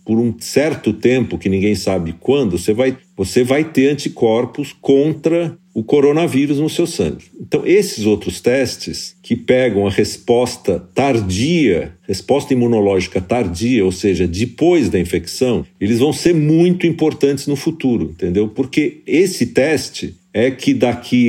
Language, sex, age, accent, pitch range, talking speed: Portuguese, male, 50-69, Brazilian, 100-140 Hz, 140 wpm